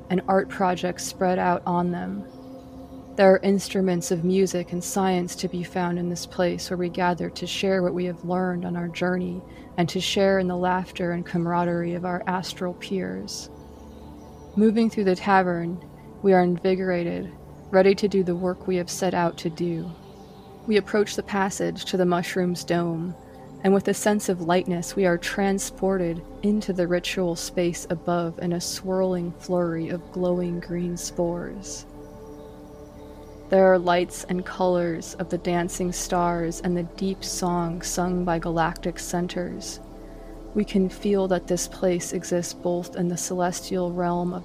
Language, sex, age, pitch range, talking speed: English, female, 20-39, 175-185 Hz, 165 wpm